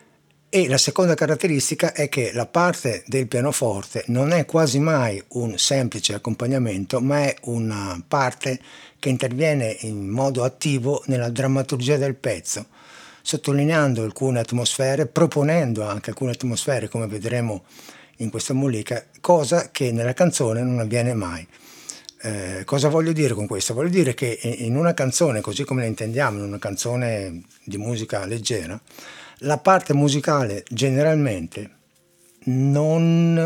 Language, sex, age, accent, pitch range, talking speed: Italian, male, 60-79, native, 115-150 Hz, 135 wpm